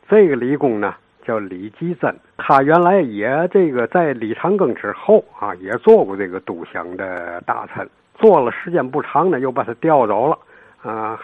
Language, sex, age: Chinese, male, 60-79